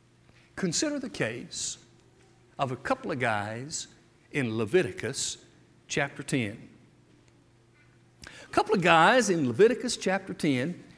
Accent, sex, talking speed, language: American, male, 110 wpm, English